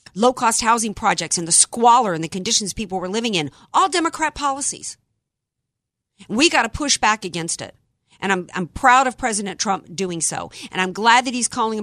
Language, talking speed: English, 195 wpm